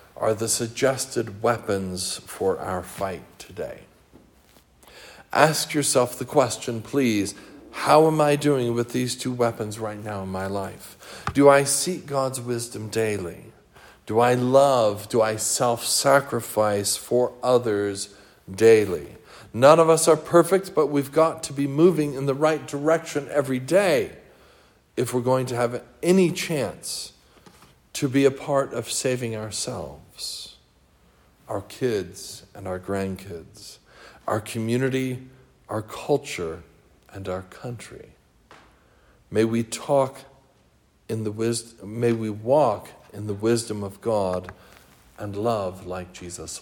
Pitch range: 100-135 Hz